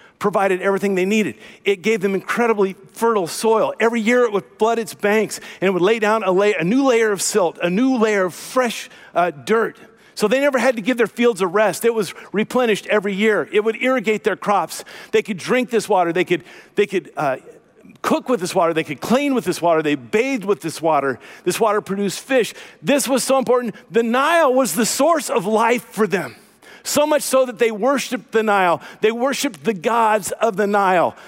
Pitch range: 180-235 Hz